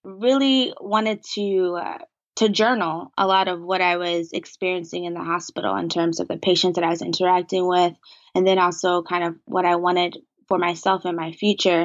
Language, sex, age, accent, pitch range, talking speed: English, female, 20-39, American, 180-220 Hz, 195 wpm